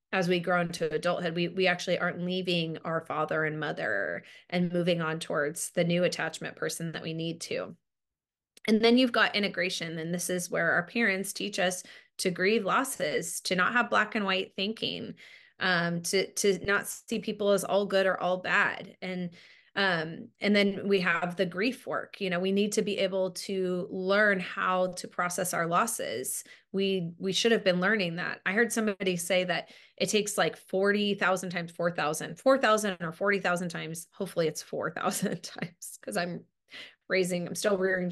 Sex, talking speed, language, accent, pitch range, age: female, 185 wpm, English, American, 175-200 Hz, 20-39